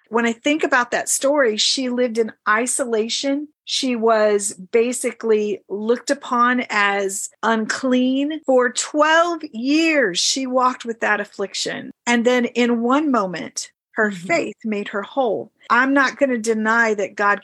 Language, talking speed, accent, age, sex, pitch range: English, 145 wpm, American, 40-59, female, 200-245 Hz